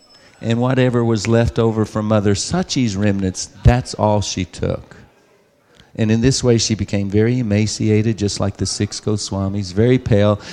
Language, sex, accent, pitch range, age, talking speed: English, male, American, 100-115 Hz, 50-69, 160 wpm